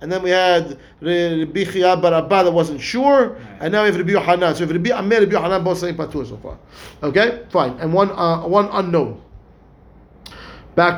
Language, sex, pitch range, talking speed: English, male, 160-205 Hz, 190 wpm